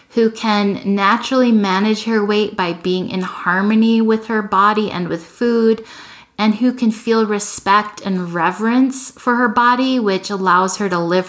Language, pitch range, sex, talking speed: English, 185-225 Hz, female, 165 wpm